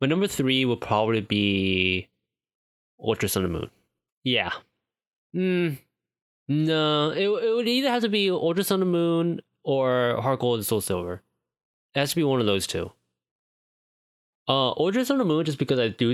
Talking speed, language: 175 wpm, English